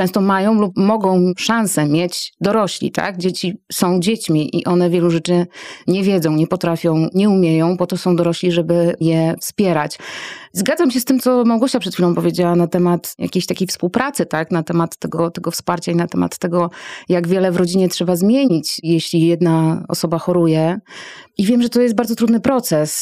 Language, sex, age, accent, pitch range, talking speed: Polish, female, 30-49, native, 165-200 Hz, 185 wpm